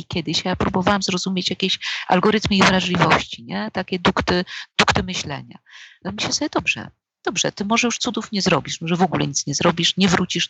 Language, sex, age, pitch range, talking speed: Polish, female, 40-59, 165-225 Hz, 190 wpm